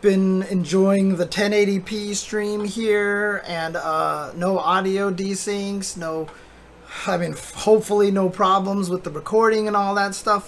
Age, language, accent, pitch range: 20-39, English, American, 180-215 Hz